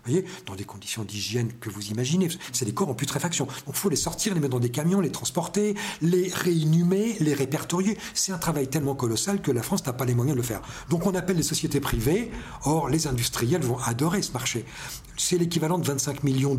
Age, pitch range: 50-69, 125-165 Hz